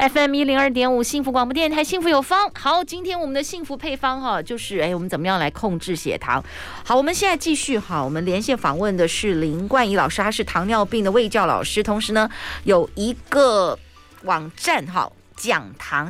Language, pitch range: Chinese, 180-255 Hz